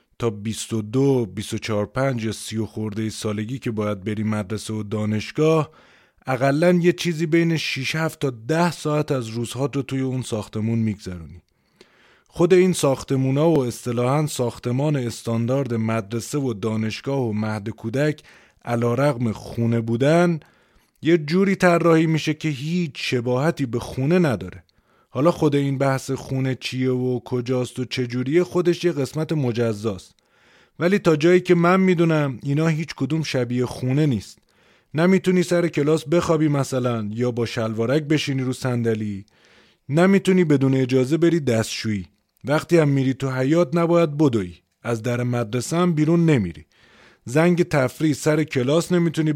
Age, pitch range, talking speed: 30-49, 115-160 Hz, 140 wpm